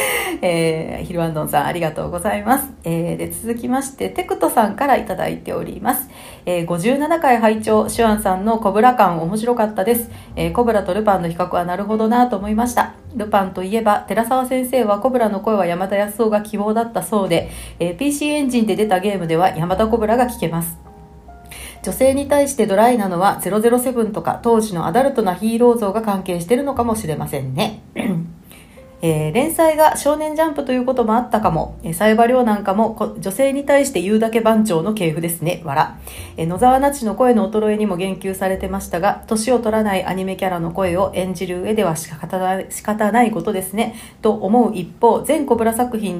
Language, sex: Japanese, female